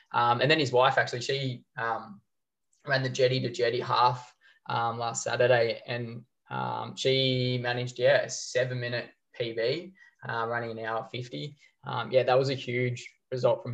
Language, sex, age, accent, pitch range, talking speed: English, male, 20-39, Australian, 115-130 Hz, 170 wpm